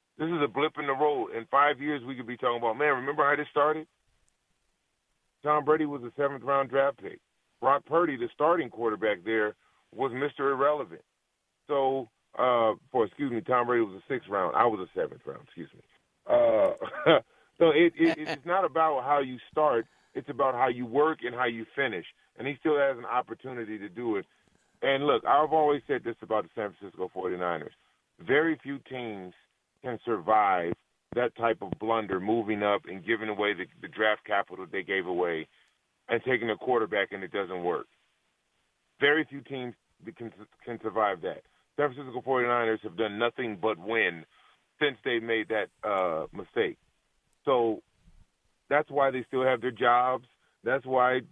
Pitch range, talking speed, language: 115-145 Hz, 180 wpm, English